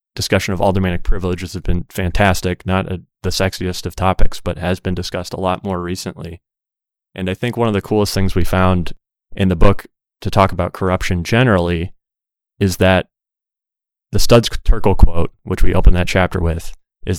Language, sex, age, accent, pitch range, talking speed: English, male, 20-39, American, 90-100 Hz, 180 wpm